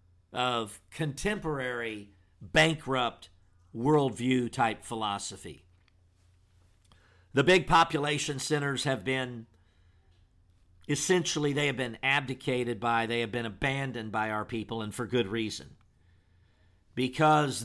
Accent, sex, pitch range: American, male, 90-140 Hz